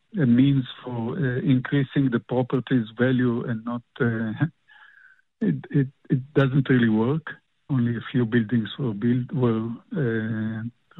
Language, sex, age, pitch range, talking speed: English, male, 50-69, 125-150 Hz, 130 wpm